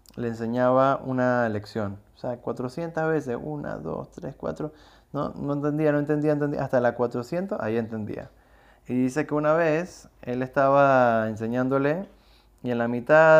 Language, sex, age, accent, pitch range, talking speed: Spanish, male, 20-39, Argentinian, 115-145 Hz, 155 wpm